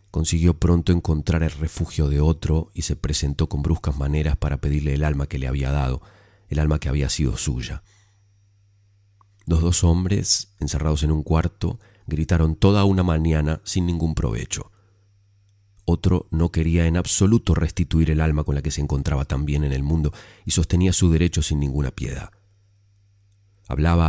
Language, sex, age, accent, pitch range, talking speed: Spanish, male, 30-49, Argentinian, 75-100 Hz, 165 wpm